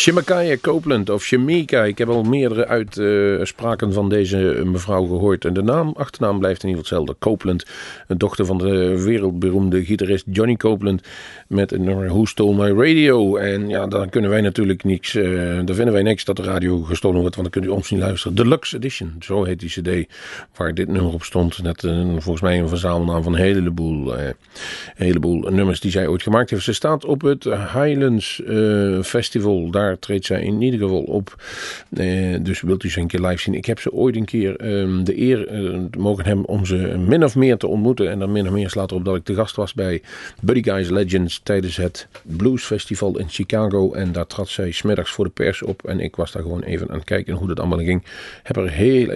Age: 40-59